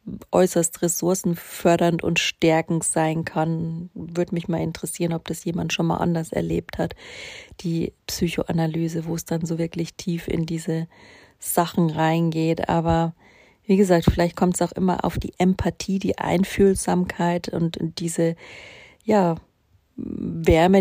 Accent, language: German, German